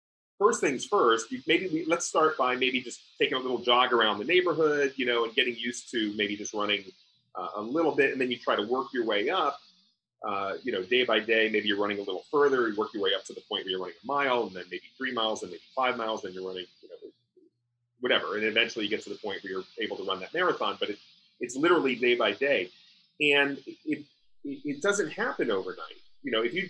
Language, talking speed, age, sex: English, 250 wpm, 30-49, male